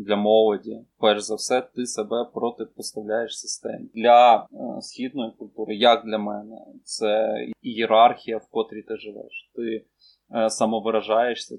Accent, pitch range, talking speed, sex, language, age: native, 110-125 Hz, 120 wpm, male, Ukrainian, 20-39